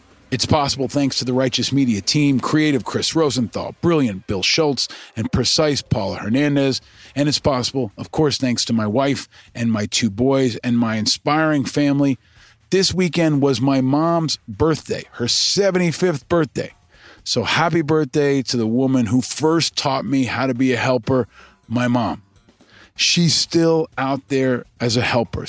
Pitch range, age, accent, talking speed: 115-145 Hz, 40-59, American, 160 wpm